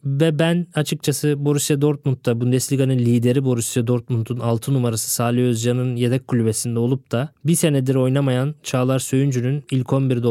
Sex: male